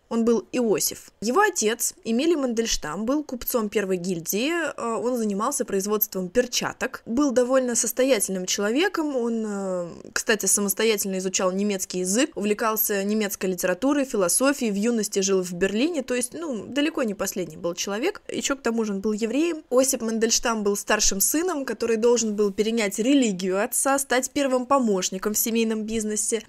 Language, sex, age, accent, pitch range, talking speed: Russian, female, 20-39, native, 200-260 Hz, 150 wpm